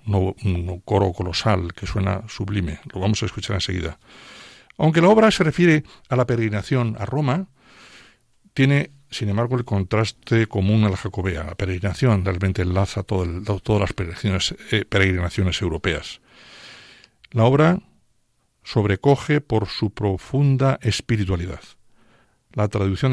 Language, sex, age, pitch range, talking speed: Spanish, male, 60-79, 95-125 Hz, 130 wpm